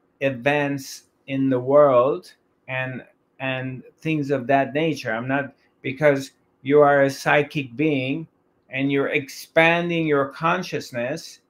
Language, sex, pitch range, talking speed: English, male, 140-160 Hz, 120 wpm